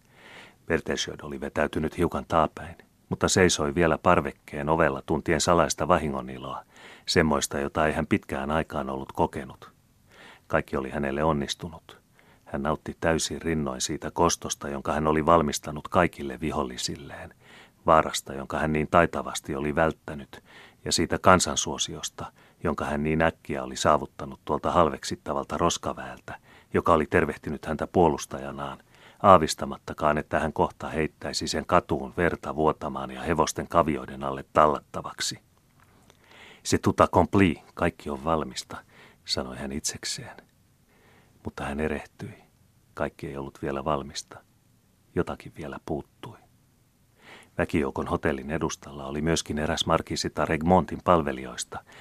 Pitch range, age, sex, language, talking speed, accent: 70-85 Hz, 30-49, male, Finnish, 120 wpm, native